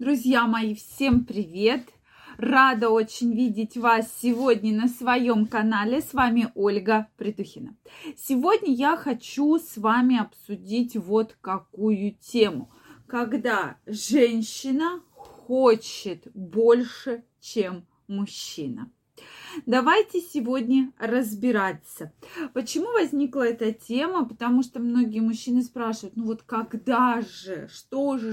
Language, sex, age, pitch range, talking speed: Russian, female, 20-39, 220-265 Hz, 105 wpm